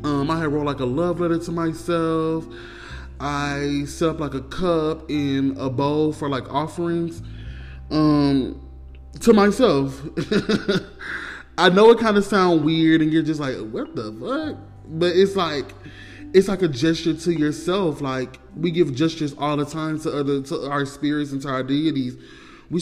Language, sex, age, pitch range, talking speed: English, male, 20-39, 135-165 Hz, 170 wpm